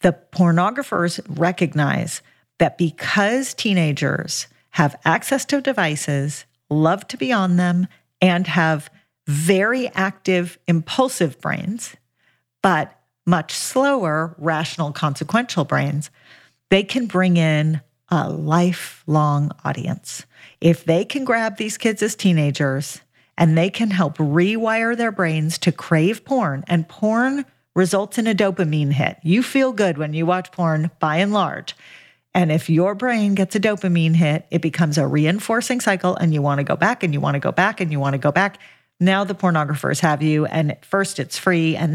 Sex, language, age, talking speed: female, English, 40-59, 155 wpm